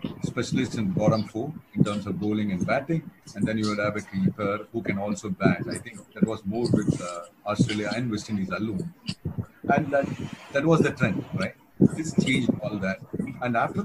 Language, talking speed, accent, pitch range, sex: English, 200 wpm, Indian, 115-170 Hz, male